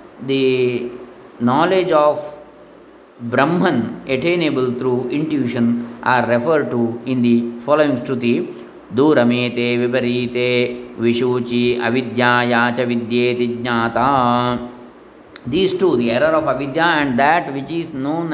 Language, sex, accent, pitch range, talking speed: English, male, Indian, 120-160 Hz, 80 wpm